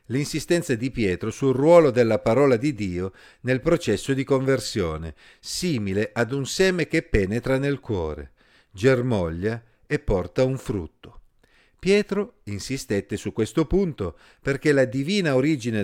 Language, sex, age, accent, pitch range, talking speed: Italian, male, 50-69, native, 100-140 Hz, 135 wpm